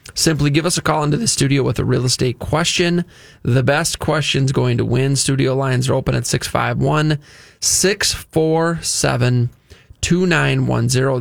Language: English